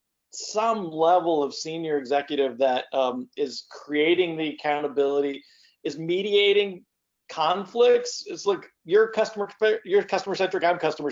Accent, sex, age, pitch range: American, male, 40-59, 140-180 Hz